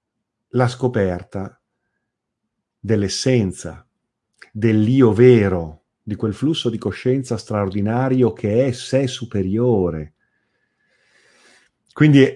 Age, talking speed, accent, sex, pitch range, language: 40-59, 80 wpm, native, male, 105-130 Hz, Italian